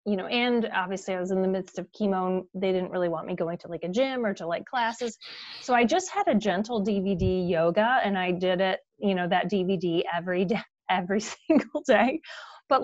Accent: American